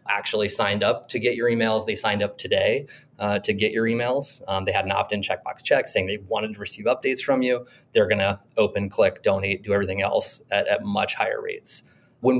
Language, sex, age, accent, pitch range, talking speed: English, male, 20-39, American, 100-120 Hz, 225 wpm